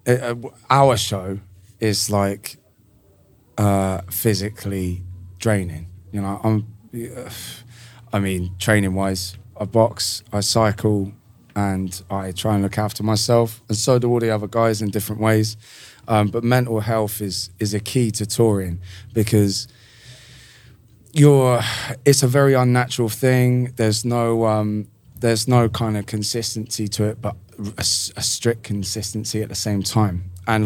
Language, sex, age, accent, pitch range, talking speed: English, male, 20-39, British, 100-120 Hz, 145 wpm